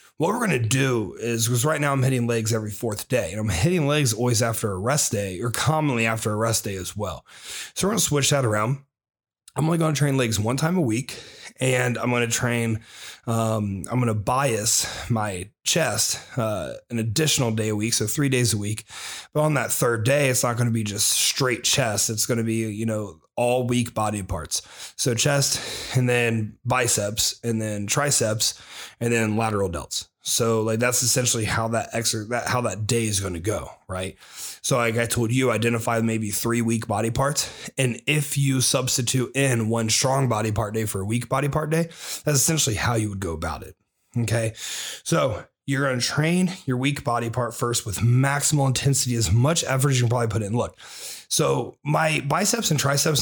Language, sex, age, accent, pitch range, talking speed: English, male, 30-49, American, 110-135 Hz, 210 wpm